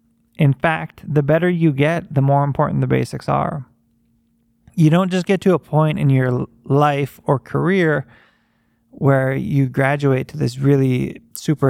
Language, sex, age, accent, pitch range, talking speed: English, male, 20-39, American, 130-160 Hz, 160 wpm